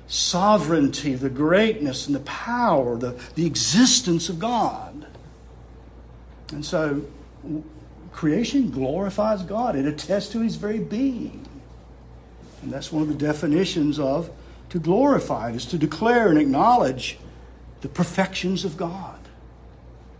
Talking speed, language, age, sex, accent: 120 wpm, English, 60-79, male, American